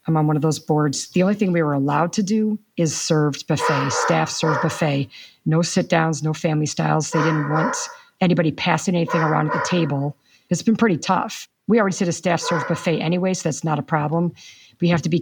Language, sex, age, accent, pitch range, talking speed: English, female, 50-69, American, 150-175 Hz, 225 wpm